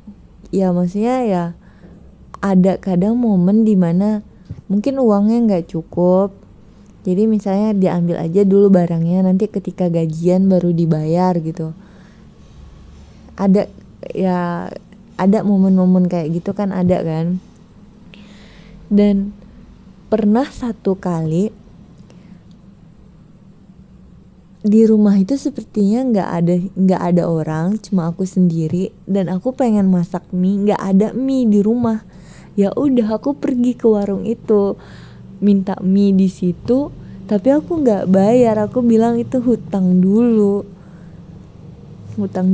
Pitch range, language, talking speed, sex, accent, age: 180-215 Hz, Indonesian, 110 wpm, female, native, 20-39